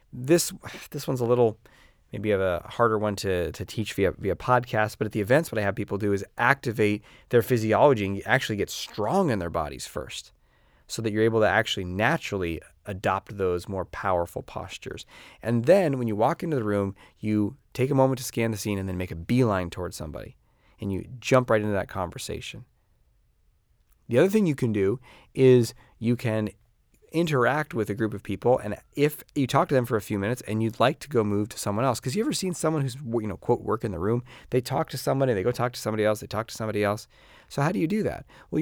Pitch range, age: 105-130 Hz, 30-49